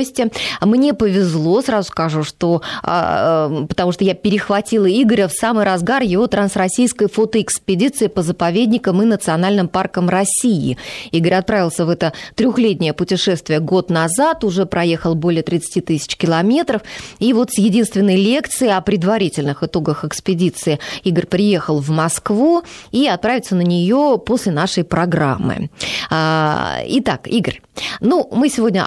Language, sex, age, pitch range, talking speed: Russian, female, 20-39, 160-210 Hz, 125 wpm